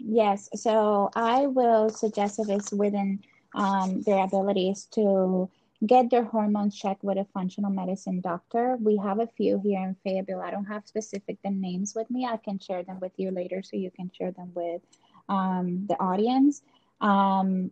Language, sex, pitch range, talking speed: English, female, 195-225 Hz, 175 wpm